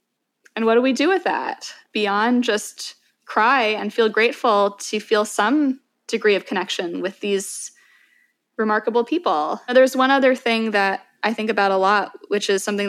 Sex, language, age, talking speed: female, English, 20-39, 170 wpm